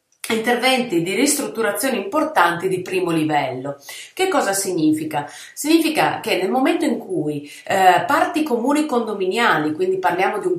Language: Italian